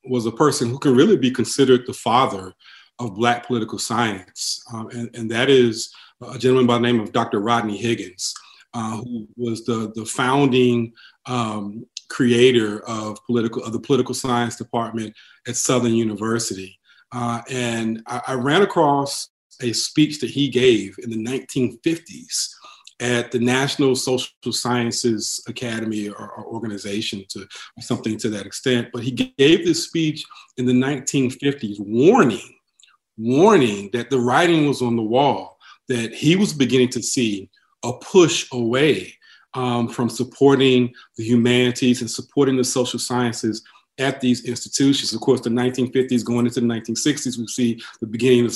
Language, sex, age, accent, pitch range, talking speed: English, male, 40-59, American, 115-130 Hz, 155 wpm